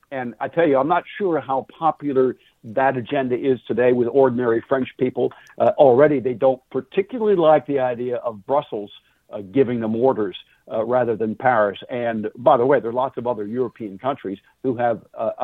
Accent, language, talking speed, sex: American, English, 190 wpm, male